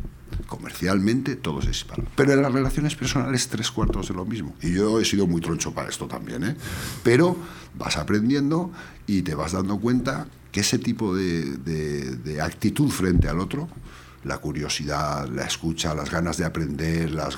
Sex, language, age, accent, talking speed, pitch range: male, Spanish, 60-79, Spanish, 175 wpm, 85-135 Hz